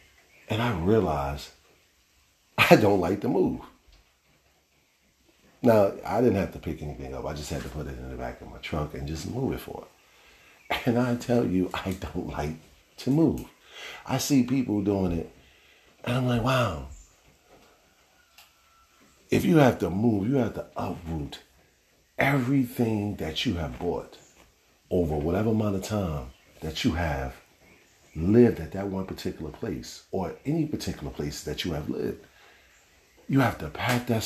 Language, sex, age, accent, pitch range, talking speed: English, male, 50-69, American, 75-105 Hz, 165 wpm